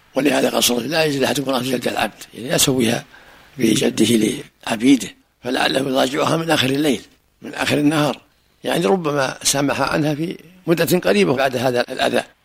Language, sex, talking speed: Arabic, male, 150 wpm